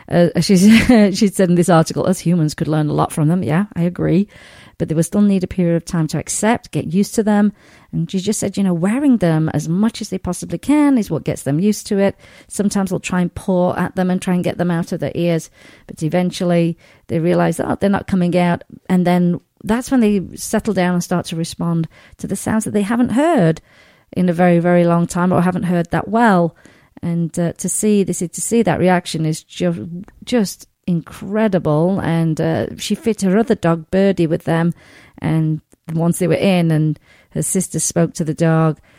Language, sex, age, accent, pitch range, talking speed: English, female, 40-59, British, 160-190 Hz, 220 wpm